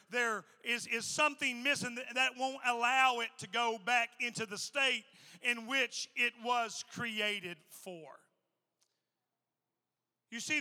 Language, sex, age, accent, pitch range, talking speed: English, male, 40-59, American, 235-280 Hz, 135 wpm